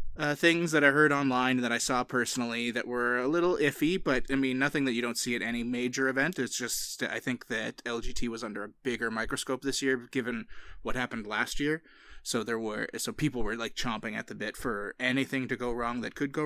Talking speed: 235 wpm